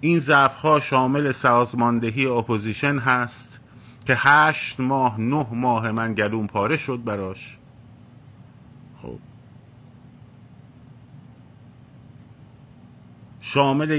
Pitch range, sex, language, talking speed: 120-135 Hz, male, Persian, 75 wpm